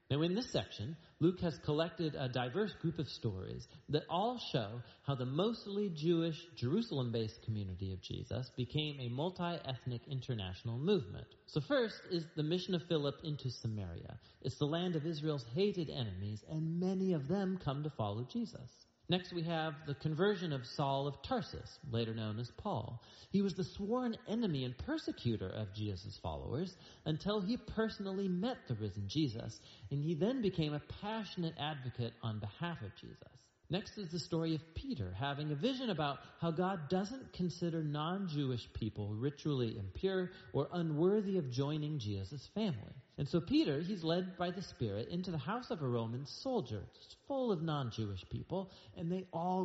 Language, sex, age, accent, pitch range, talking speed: English, male, 40-59, American, 120-180 Hz, 170 wpm